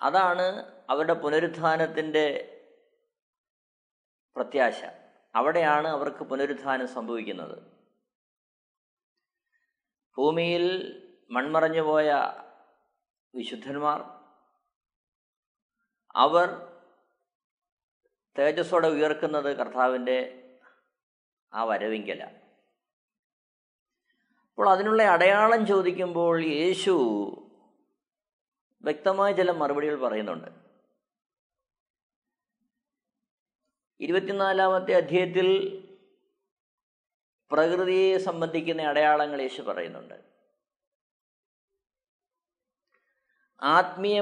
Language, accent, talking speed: Malayalam, native, 45 wpm